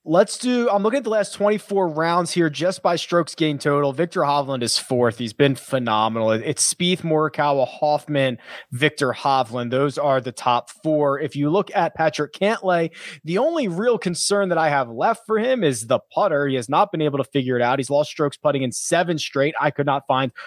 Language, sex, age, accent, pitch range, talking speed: English, male, 20-39, American, 135-185 Hz, 210 wpm